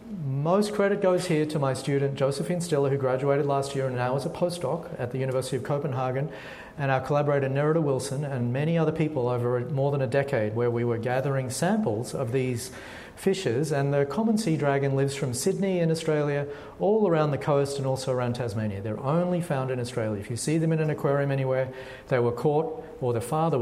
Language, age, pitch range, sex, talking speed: English, 40-59, 125-155 Hz, male, 210 wpm